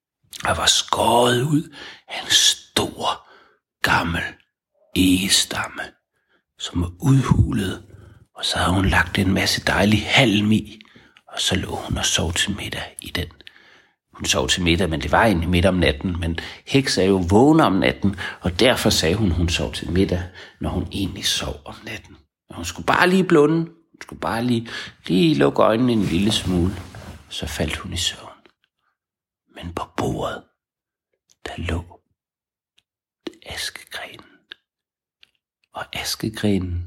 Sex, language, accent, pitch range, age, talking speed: male, Danish, native, 90-125 Hz, 60-79, 150 wpm